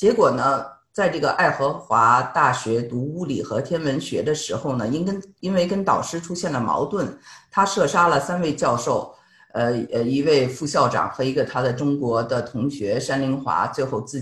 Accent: native